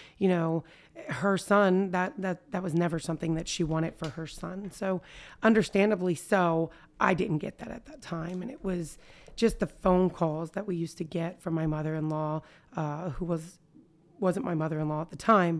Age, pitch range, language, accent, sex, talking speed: 30-49, 155-180 Hz, English, American, female, 190 wpm